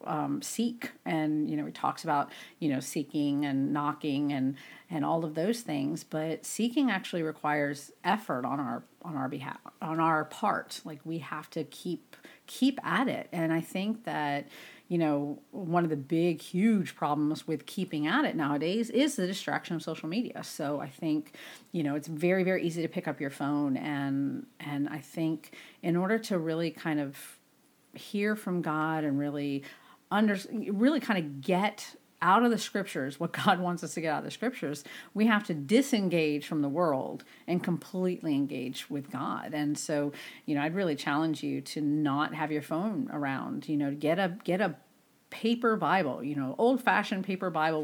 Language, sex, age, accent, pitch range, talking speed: English, female, 40-59, American, 150-195 Hz, 190 wpm